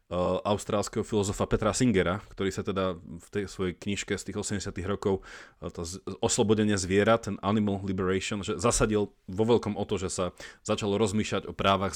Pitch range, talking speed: 95-120 Hz, 165 wpm